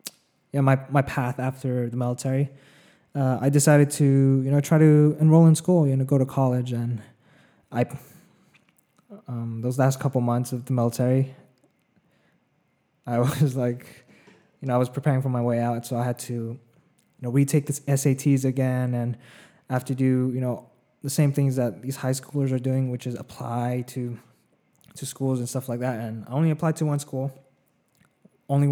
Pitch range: 120-145 Hz